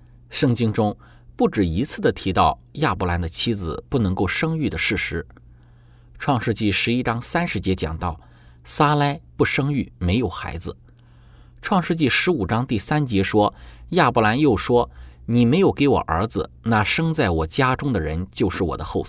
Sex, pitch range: male, 85-125 Hz